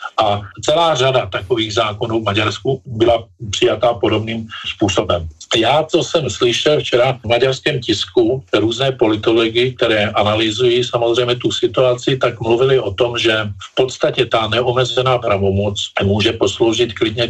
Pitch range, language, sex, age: 105-125 Hz, Czech, male, 50-69